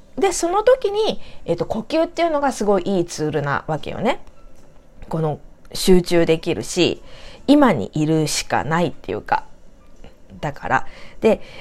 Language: Japanese